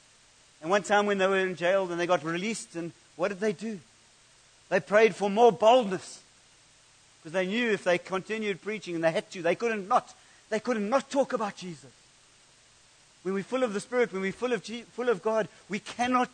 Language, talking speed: English, 215 wpm